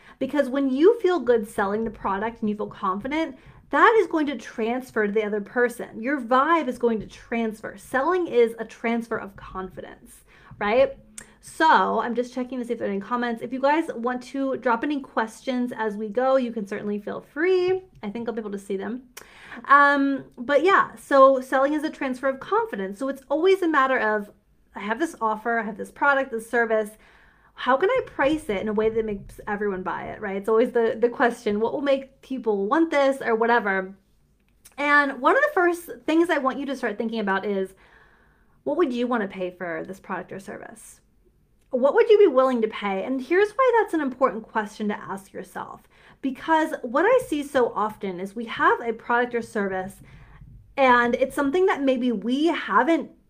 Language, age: English, 30-49